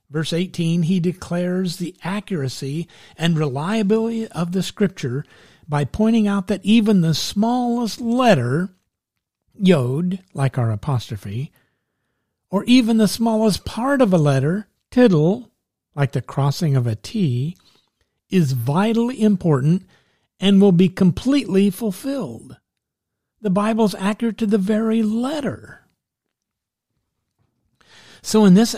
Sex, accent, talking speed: male, American, 115 wpm